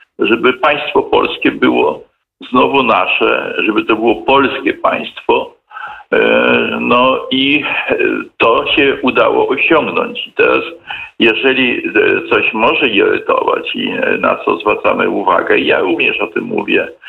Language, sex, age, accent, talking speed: Polish, male, 50-69, native, 115 wpm